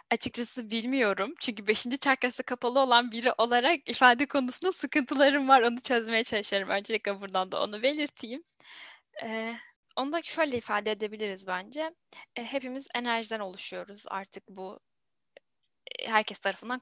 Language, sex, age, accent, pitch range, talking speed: Turkish, female, 10-29, native, 210-260 Hz, 125 wpm